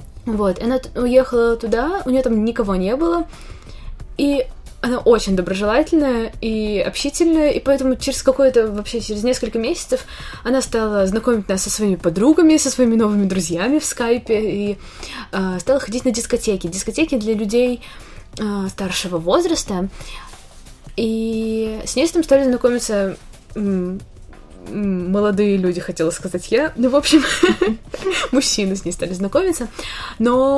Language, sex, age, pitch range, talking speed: Russian, female, 20-39, 195-265 Hz, 135 wpm